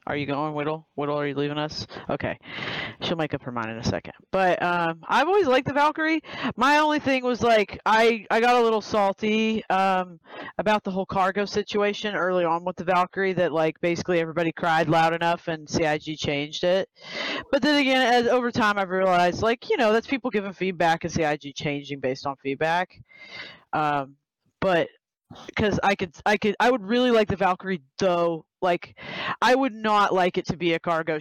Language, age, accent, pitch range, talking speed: English, 30-49, American, 160-205 Hz, 200 wpm